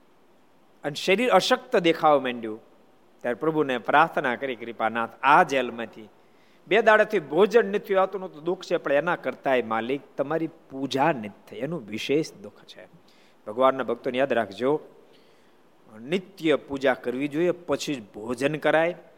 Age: 50-69